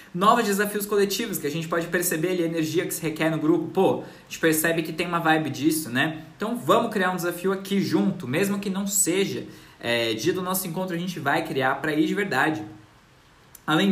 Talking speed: 220 wpm